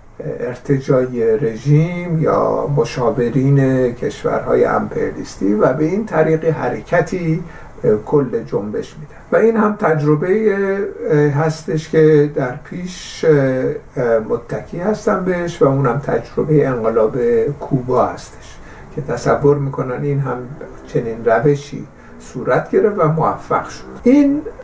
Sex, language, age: male, Persian, 60-79